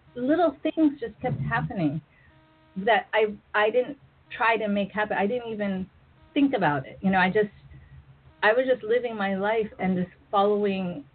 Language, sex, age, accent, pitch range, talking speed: English, female, 40-59, American, 160-210 Hz, 170 wpm